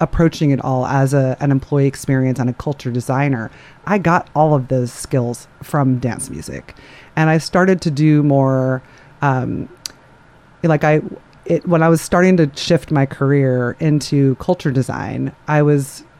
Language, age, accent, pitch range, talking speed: English, 30-49, American, 135-160 Hz, 155 wpm